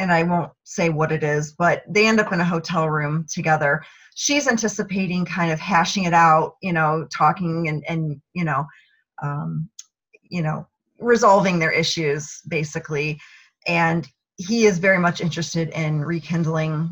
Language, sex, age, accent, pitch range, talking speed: English, female, 30-49, American, 155-200 Hz, 160 wpm